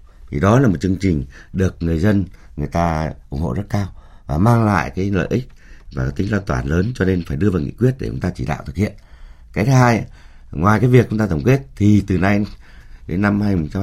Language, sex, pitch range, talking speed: Vietnamese, male, 70-100 Hz, 245 wpm